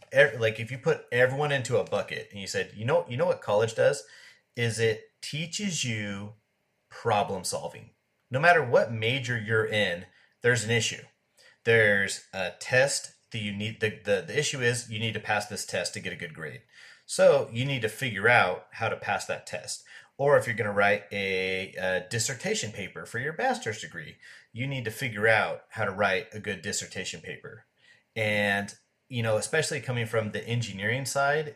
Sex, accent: male, American